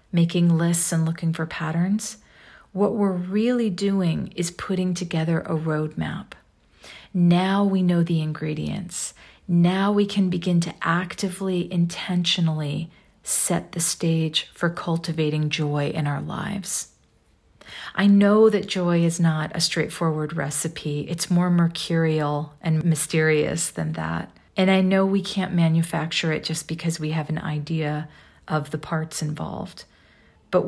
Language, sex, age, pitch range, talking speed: English, female, 40-59, 160-190 Hz, 135 wpm